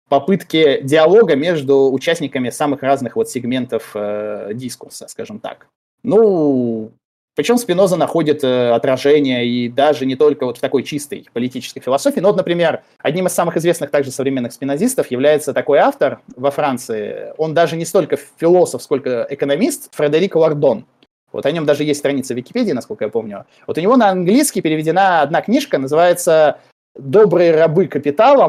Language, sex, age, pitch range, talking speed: Russian, male, 20-39, 135-185 Hz, 160 wpm